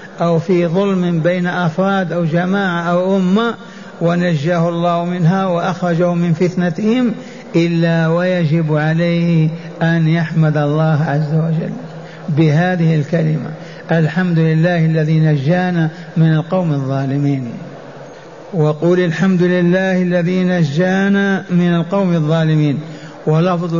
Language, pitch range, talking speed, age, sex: Arabic, 165-190 Hz, 105 wpm, 60-79, male